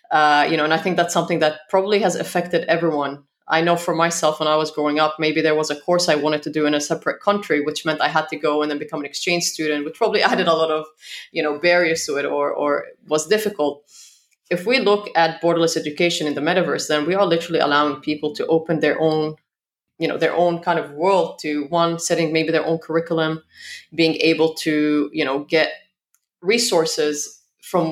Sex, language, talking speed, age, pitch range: female, English, 220 wpm, 30-49, 155-170 Hz